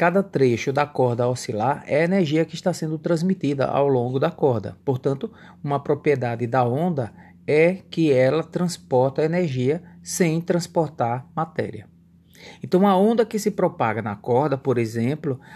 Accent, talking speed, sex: Brazilian, 150 wpm, male